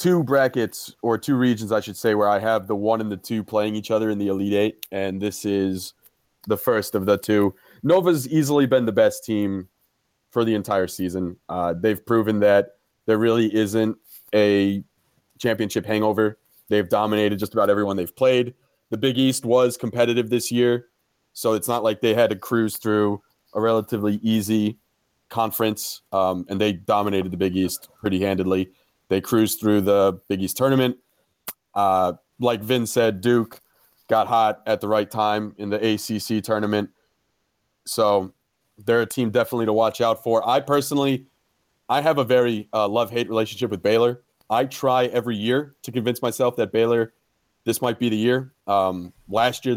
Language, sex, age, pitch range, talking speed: English, male, 20-39, 105-120 Hz, 175 wpm